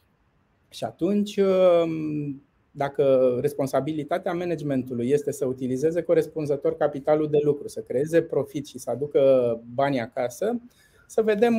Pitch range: 145-205 Hz